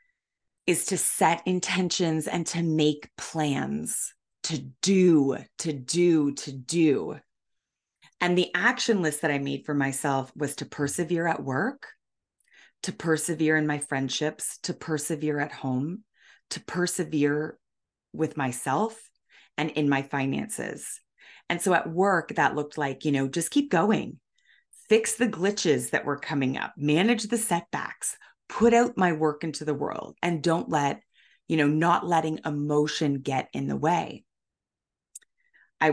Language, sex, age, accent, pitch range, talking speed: English, female, 30-49, American, 150-190 Hz, 145 wpm